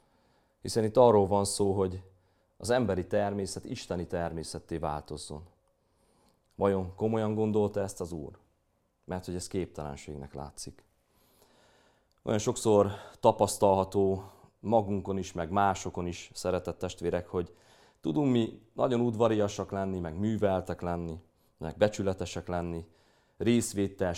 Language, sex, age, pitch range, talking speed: Hungarian, male, 30-49, 90-105 Hz, 115 wpm